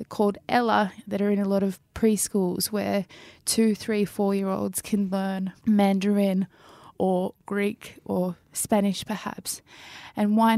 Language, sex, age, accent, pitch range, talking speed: English, female, 20-39, Australian, 195-225 Hz, 130 wpm